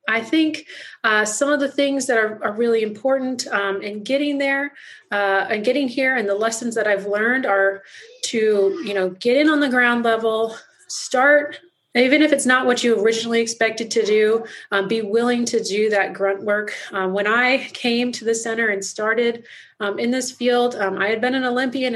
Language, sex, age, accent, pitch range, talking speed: English, female, 30-49, American, 200-245 Hz, 195 wpm